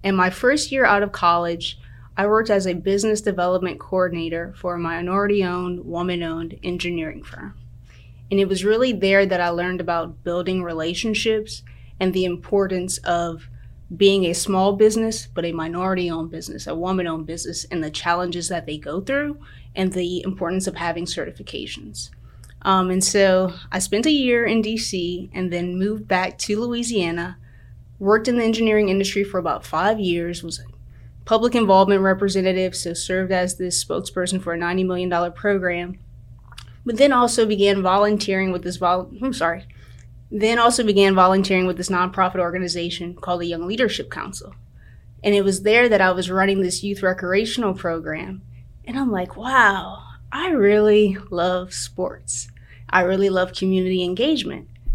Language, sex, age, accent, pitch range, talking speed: English, female, 20-39, American, 170-200 Hz, 160 wpm